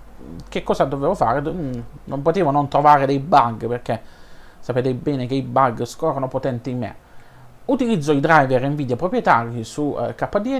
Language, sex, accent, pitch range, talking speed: Italian, male, native, 125-170 Hz, 155 wpm